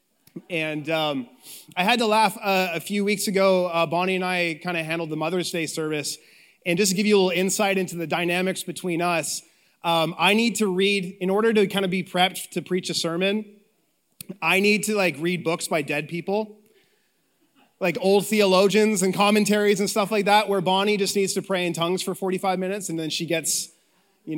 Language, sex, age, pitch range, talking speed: English, male, 30-49, 160-195 Hz, 210 wpm